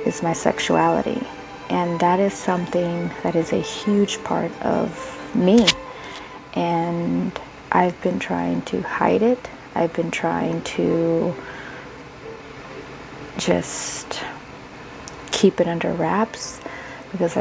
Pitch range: 165-185 Hz